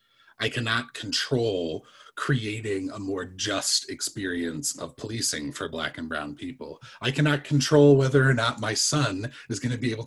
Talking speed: 160 wpm